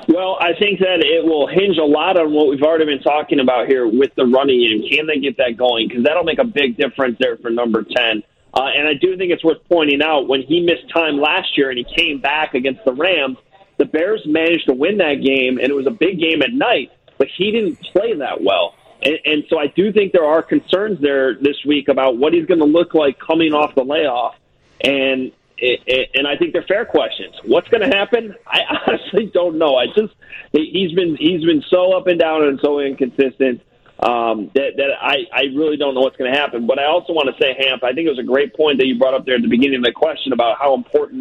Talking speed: 250 wpm